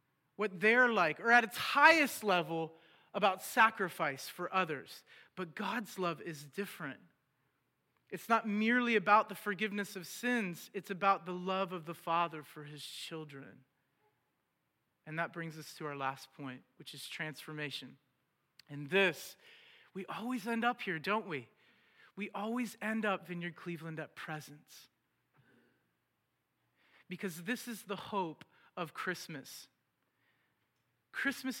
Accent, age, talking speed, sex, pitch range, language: American, 40-59, 135 wpm, male, 160-215 Hz, English